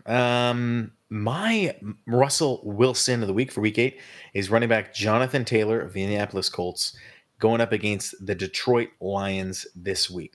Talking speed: 155 wpm